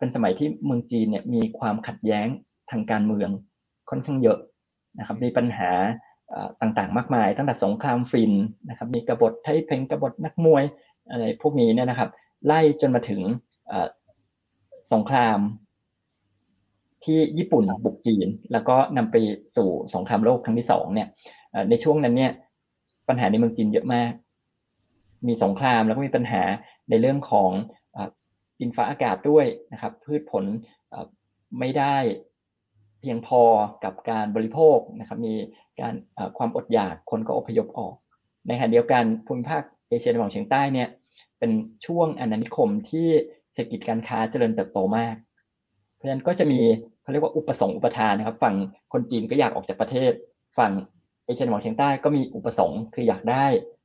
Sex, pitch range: male, 110-150 Hz